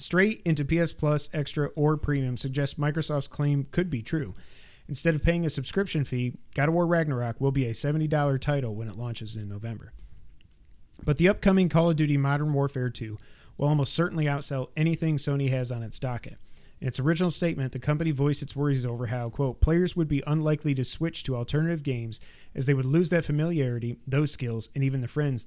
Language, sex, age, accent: English, male, 30-49, American